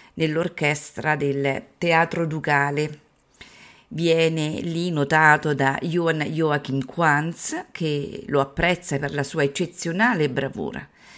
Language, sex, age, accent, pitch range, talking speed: Italian, female, 40-59, native, 150-210 Hz, 100 wpm